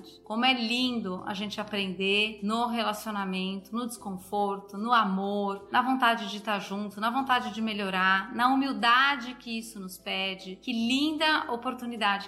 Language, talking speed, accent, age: Portuguese, 145 wpm, Brazilian, 30-49